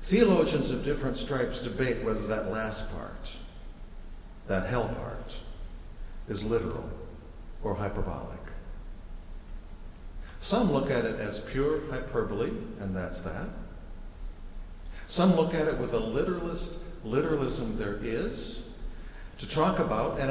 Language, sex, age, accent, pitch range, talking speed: English, male, 60-79, American, 100-155 Hz, 120 wpm